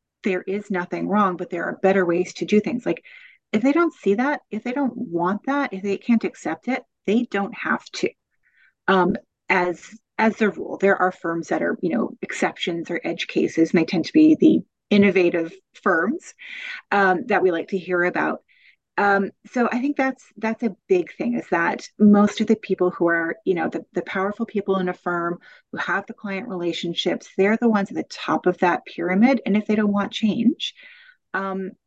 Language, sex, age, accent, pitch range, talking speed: English, female, 30-49, American, 175-235 Hz, 205 wpm